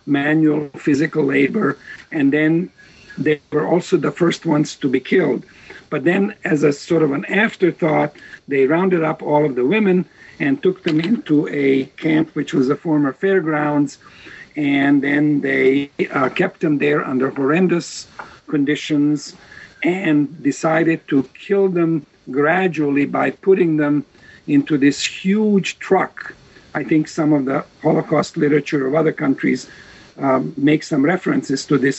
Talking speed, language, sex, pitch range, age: 150 wpm, English, male, 140-165 Hz, 50-69